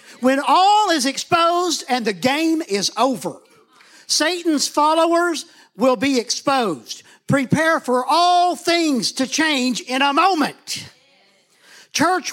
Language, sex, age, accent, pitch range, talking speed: English, male, 50-69, American, 235-320 Hz, 115 wpm